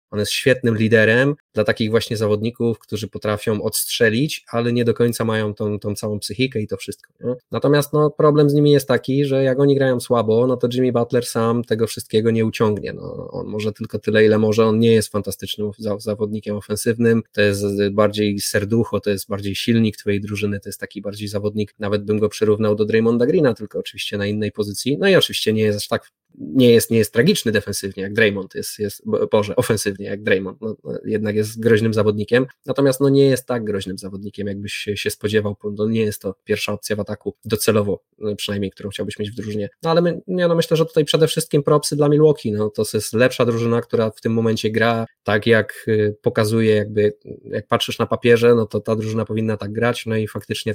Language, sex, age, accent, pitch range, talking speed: Polish, male, 20-39, native, 105-120 Hz, 210 wpm